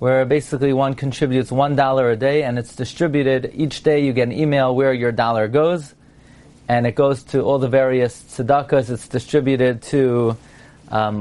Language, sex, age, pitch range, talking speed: English, male, 30-49, 120-145 Hz, 175 wpm